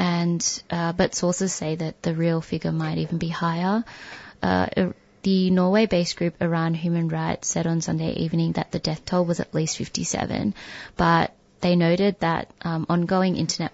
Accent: Australian